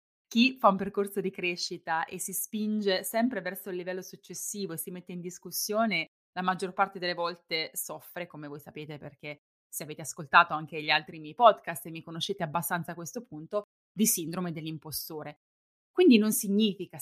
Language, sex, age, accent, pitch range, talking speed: Italian, female, 20-39, native, 160-210 Hz, 175 wpm